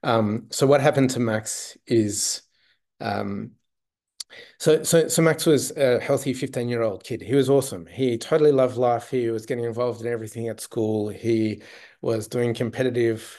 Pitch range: 100-120 Hz